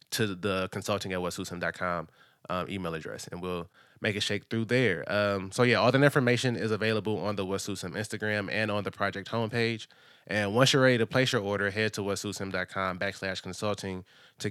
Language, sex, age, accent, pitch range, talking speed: English, male, 20-39, American, 95-110 Hz, 190 wpm